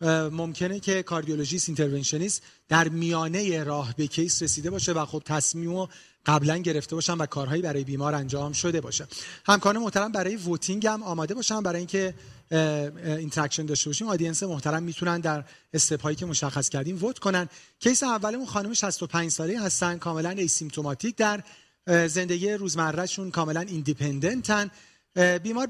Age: 40-59